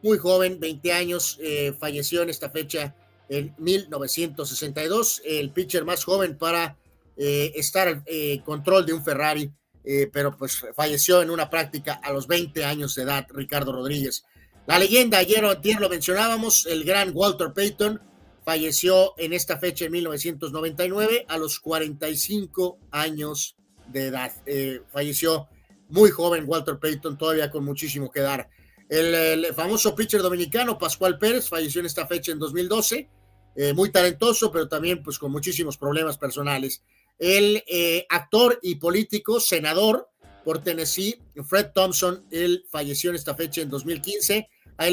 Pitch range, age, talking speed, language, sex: 150-190 Hz, 30-49, 150 wpm, Spanish, male